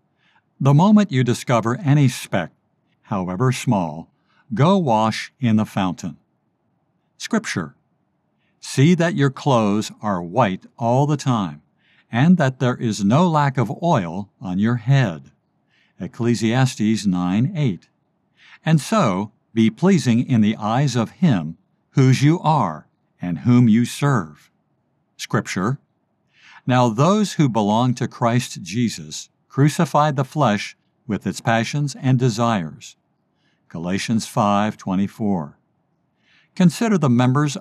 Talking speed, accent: 115 wpm, American